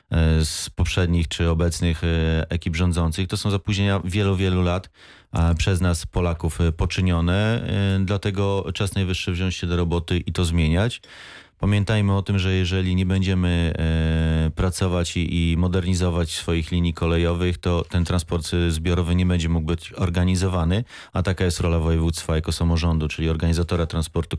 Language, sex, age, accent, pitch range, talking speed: Polish, male, 30-49, native, 85-95 Hz, 145 wpm